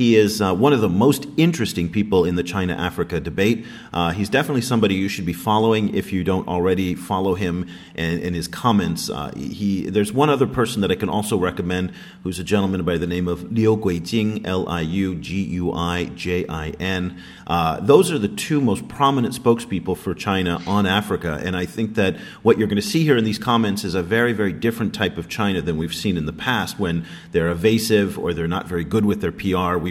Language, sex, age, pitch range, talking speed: English, male, 40-59, 85-115 Hz, 205 wpm